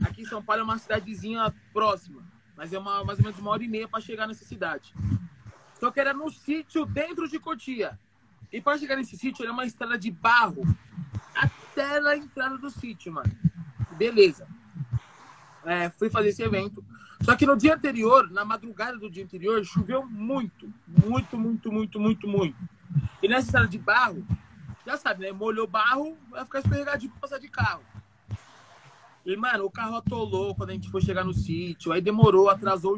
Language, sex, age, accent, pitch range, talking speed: Portuguese, male, 20-39, Brazilian, 175-255 Hz, 180 wpm